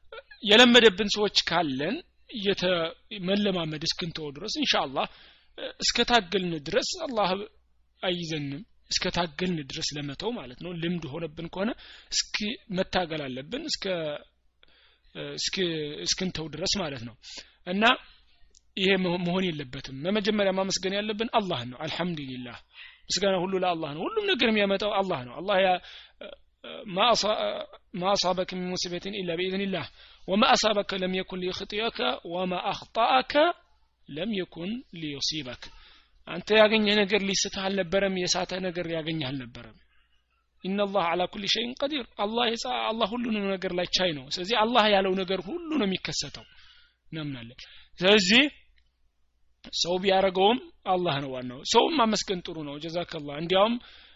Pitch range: 160-210 Hz